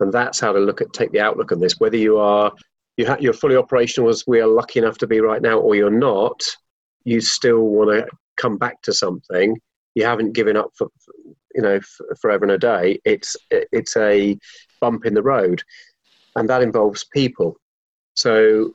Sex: male